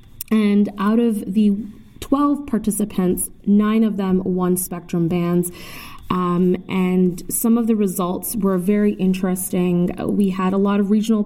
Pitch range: 180-210 Hz